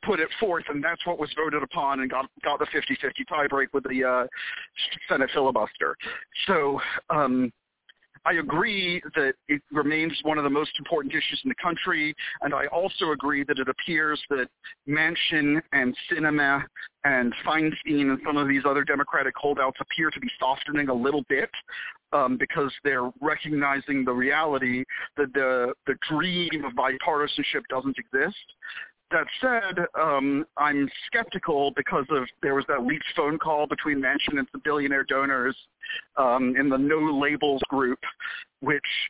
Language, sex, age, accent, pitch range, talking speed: English, male, 40-59, American, 135-170 Hz, 160 wpm